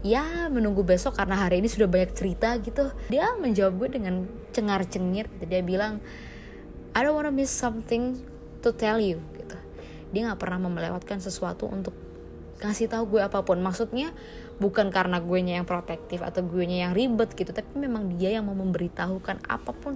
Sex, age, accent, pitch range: female, 20-39, native, 175-215 Hz